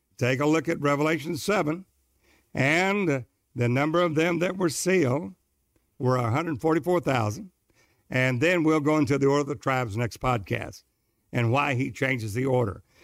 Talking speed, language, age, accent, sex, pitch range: 175 wpm, English, 60-79, American, male, 120-160 Hz